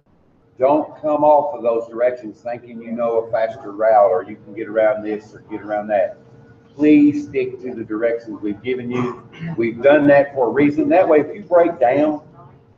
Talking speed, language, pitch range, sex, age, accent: 195 wpm, English, 115-145 Hz, male, 40-59, American